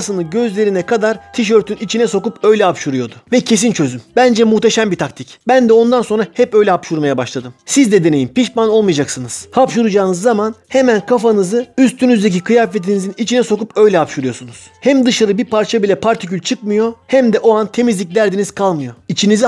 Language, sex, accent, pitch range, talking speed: Turkish, male, native, 185-230 Hz, 160 wpm